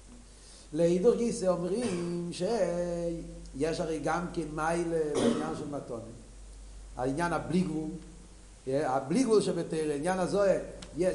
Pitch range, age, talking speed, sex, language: 160-205 Hz, 60-79, 100 wpm, male, Hebrew